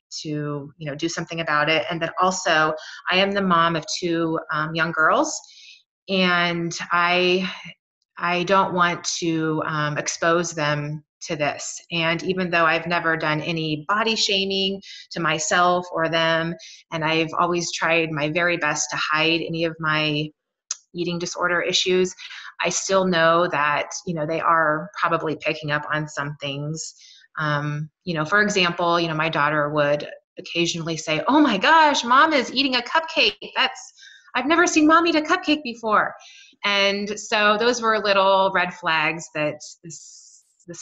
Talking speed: 160 wpm